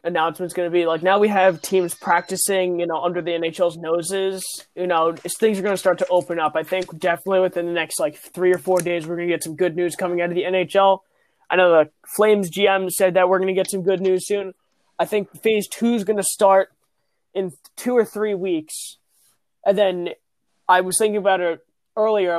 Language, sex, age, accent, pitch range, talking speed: English, male, 20-39, American, 180-215 Hz, 230 wpm